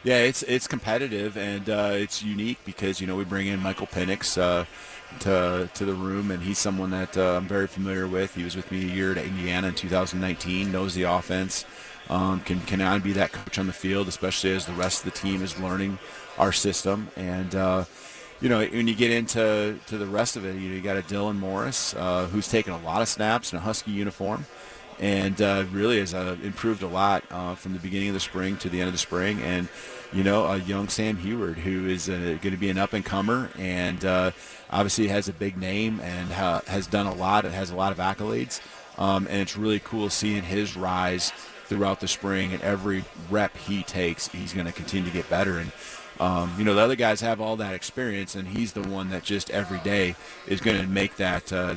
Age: 40-59